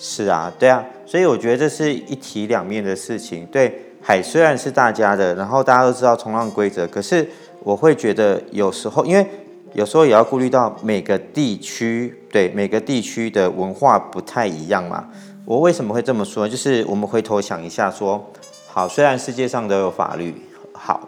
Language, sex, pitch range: Chinese, male, 100-140 Hz